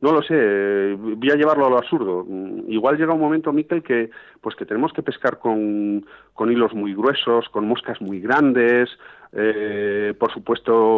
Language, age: Spanish, 40-59